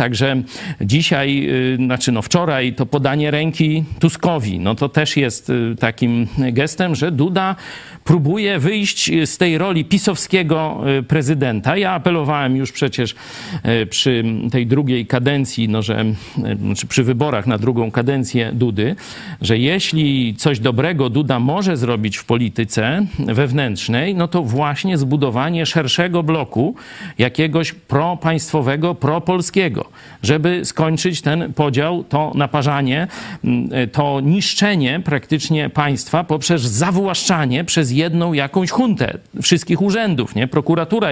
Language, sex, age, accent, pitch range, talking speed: Polish, male, 50-69, native, 130-165 Hz, 115 wpm